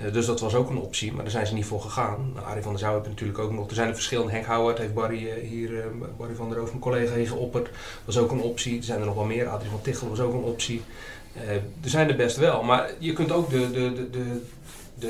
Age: 30-49